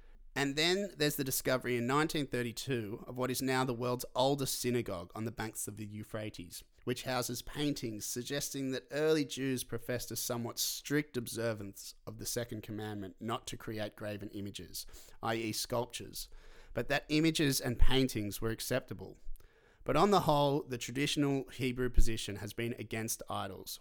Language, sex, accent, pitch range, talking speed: English, male, Australian, 110-135 Hz, 160 wpm